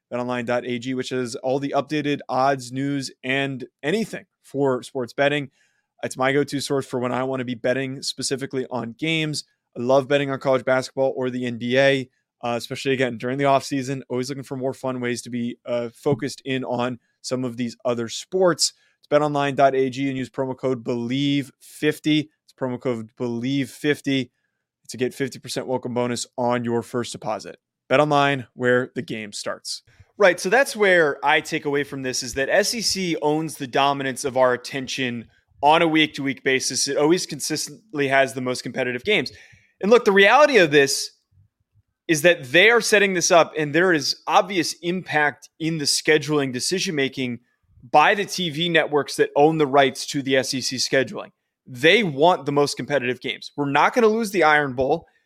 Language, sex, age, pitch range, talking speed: English, male, 20-39, 125-155 Hz, 175 wpm